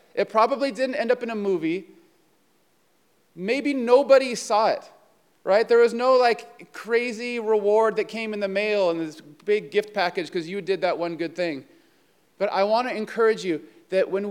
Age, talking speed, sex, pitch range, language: 30-49, 185 wpm, male, 185-235 Hz, English